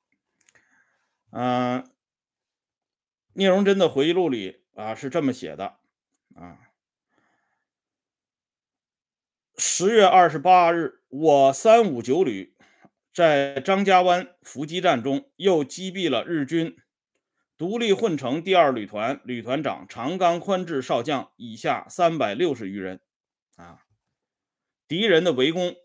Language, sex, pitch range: Swedish, male, 130-185 Hz